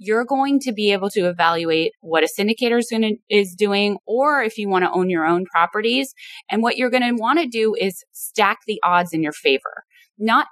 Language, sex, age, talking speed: English, female, 20-39, 230 wpm